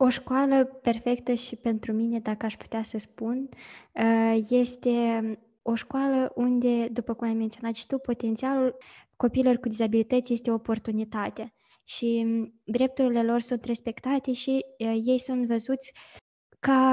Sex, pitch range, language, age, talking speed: female, 220-250 Hz, Romanian, 20-39, 130 wpm